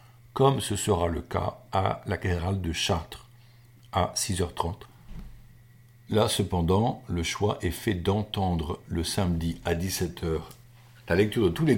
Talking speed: 145 wpm